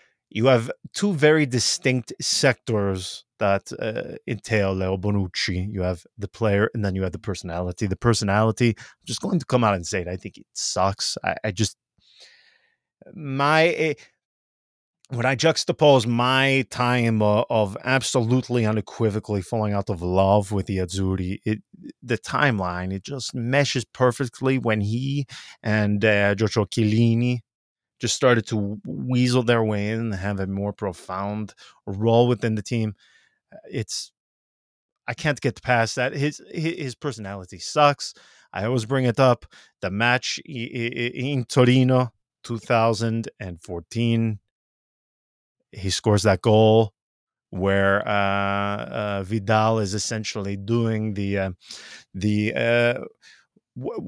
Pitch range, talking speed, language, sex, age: 100-125 Hz, 135 wpm, English, male, 20-39